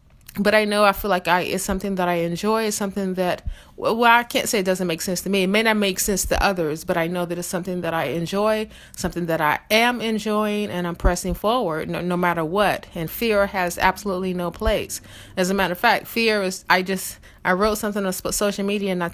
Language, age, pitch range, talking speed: English, 30-49, 185-230 Hz, 240 wpm